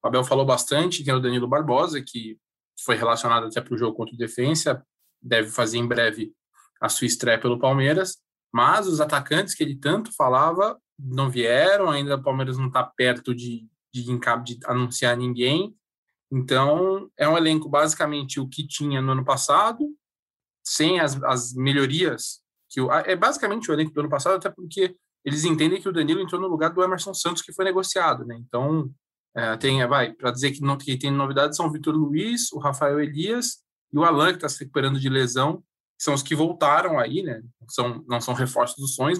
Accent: Brazilian